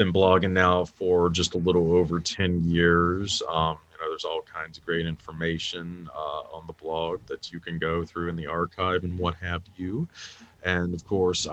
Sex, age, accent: male, 30-49, American